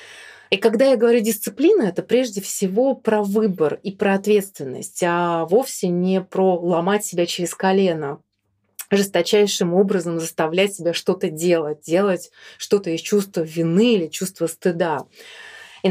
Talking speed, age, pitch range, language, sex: 135 wpm, 30-49, 175-225 Hz, Russian, female